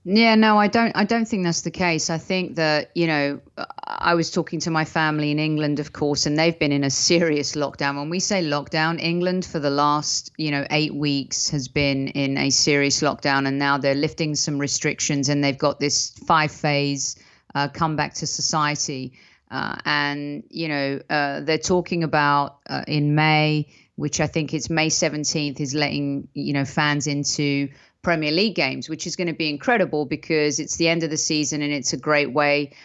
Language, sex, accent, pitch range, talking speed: English, female, British, 145-165 Hz, 200 wpm